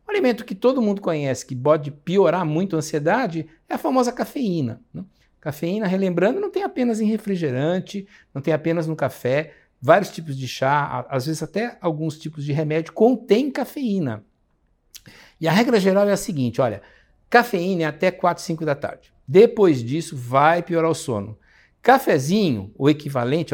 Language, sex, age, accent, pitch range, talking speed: Portuguese, male, 60-79, Brazilian, 140-215 Hz, 170 wpm